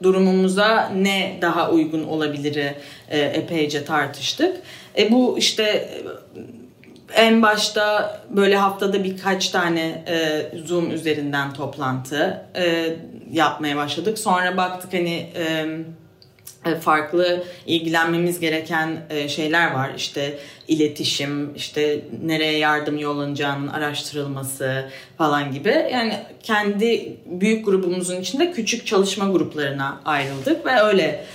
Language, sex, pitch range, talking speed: Turkish, female, 150-195 Hz, 100 wpm